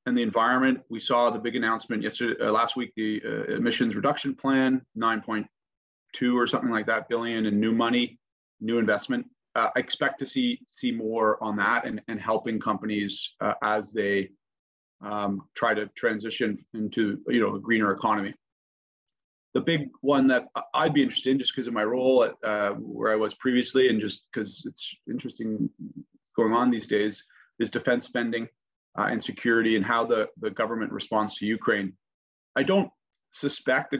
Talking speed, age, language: 180 wpm, 30-49, English